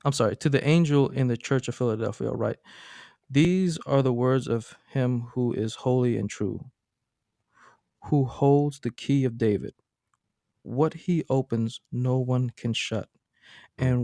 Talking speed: 155 wpm